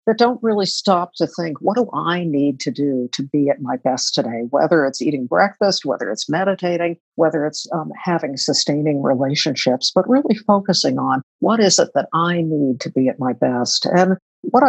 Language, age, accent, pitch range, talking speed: English, 60-79, American, 145-190 Hz, 195 wpm